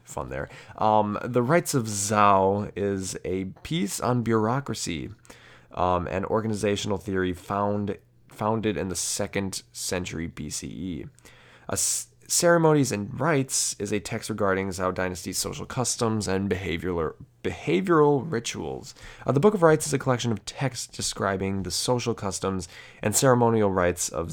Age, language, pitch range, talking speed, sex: 20-39, English, 90-120 Hz, 140 wpm, male